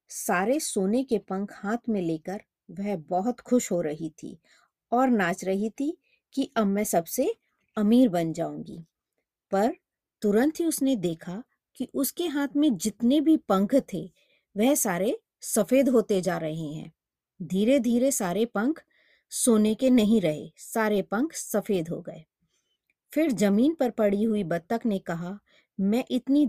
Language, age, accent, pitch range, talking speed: Hindi, 20-39, native, 185-245 Hz, 150 wpm